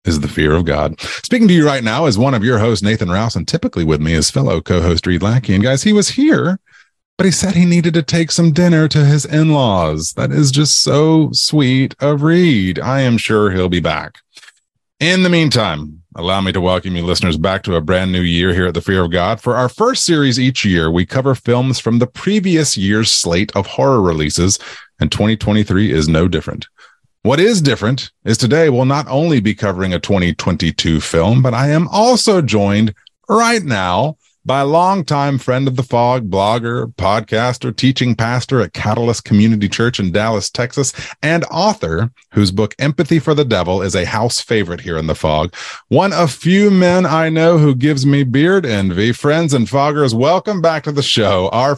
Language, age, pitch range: English, 30-49, 95-150 Hz